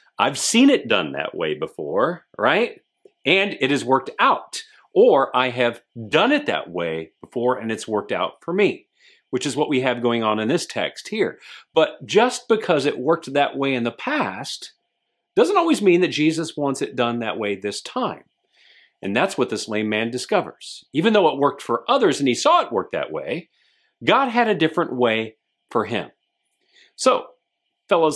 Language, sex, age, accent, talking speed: English, male, 40-59, American, 190 wpm